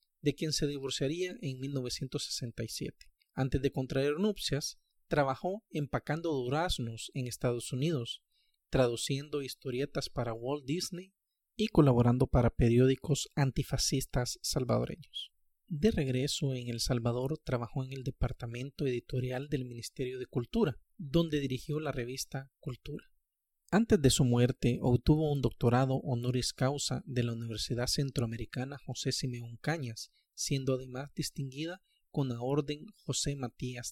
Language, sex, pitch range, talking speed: Spanish, male, 125-150 Hz, 125 wpm